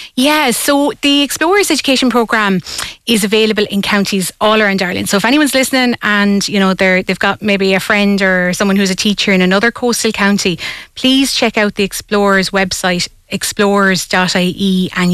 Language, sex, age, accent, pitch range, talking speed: English, female, 30-49, Irish, 195-225 Hz, 170 wpm